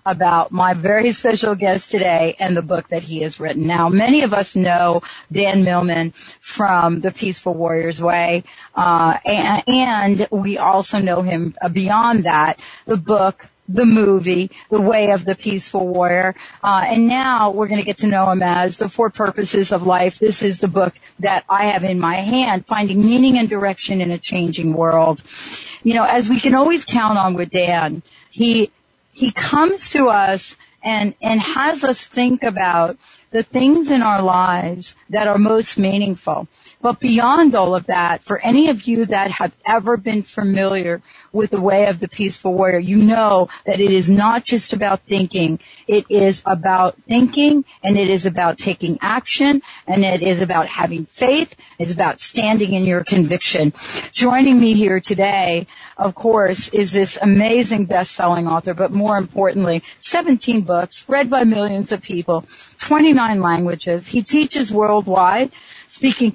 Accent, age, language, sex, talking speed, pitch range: American, 40-59, English, female, 170 wpm, 180-225 Hz